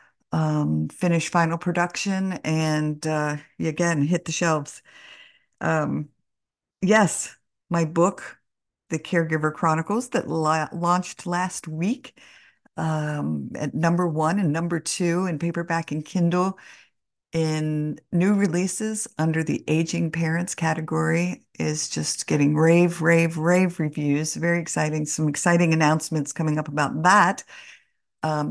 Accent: American